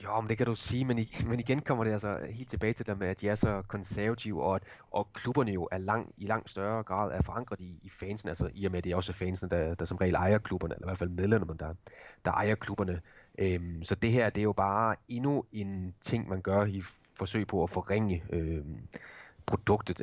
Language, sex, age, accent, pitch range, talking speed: Danish, male, 30-49, native, 90-105 Hz, 240 wpm